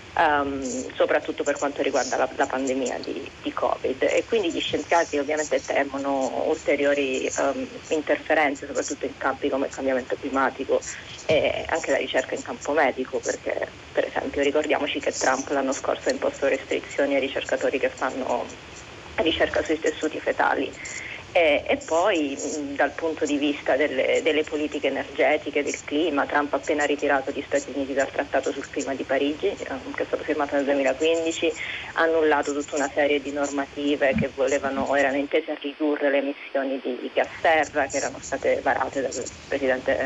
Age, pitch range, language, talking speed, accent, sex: 30-49, 140-160 Hz, Italian, 160 wpm, native, female